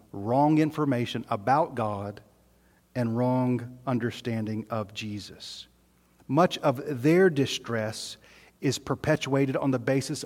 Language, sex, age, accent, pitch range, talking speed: English, male, 40-59, American, 105-140 Hz, 105 wpm